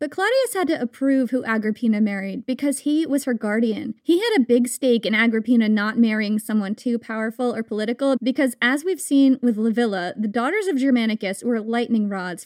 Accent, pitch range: American, 215-270 Hz